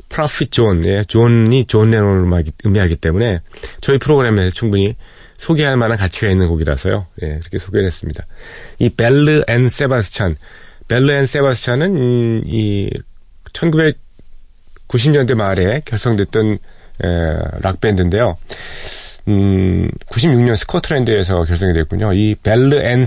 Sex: male